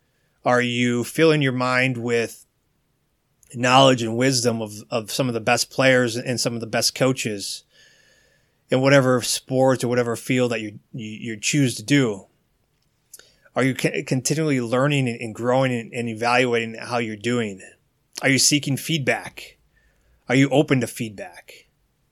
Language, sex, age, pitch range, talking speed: English, male, 30-49, 120-140 Hz, 145 wpm